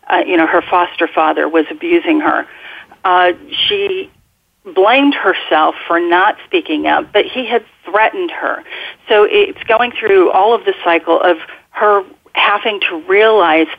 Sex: female